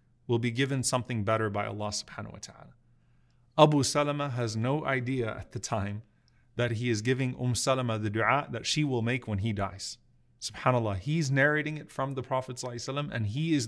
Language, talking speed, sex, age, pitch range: English, 190 wpm, male, 30-49, 115-135 Hz